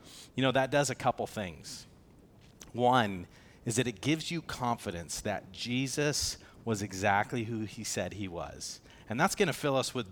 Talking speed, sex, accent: 180 wpm, male, American